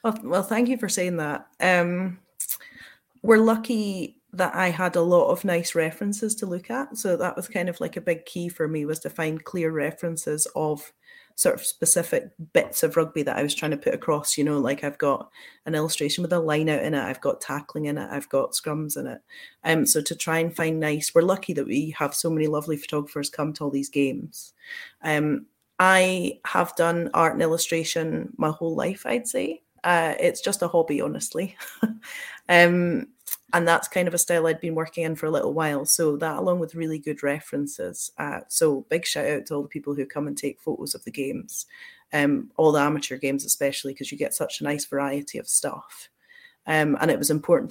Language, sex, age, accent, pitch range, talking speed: English, female, 30-49, British, 150-180 Hz, 215 wpm